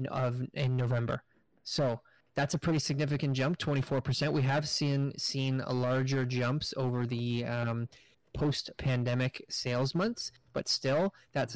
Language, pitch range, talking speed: English, 125-145 Hz, 145 wpm